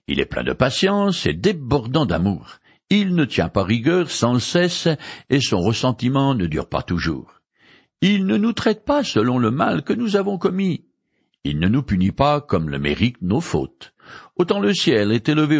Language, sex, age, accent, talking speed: French, male, 60-79, French, 190 wpm